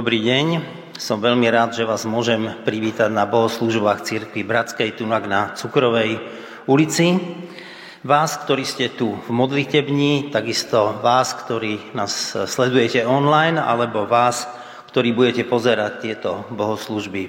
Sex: male